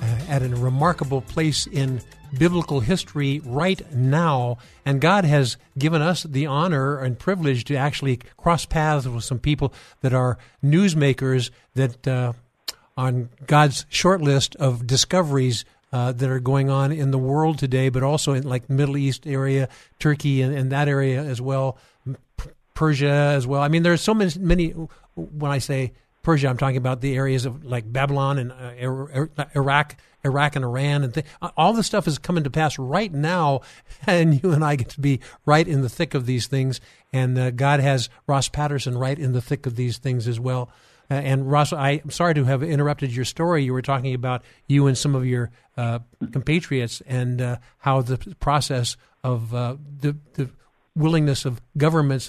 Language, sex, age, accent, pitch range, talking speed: English, male, 50-69, American, 130-150 Hz, 185 wpm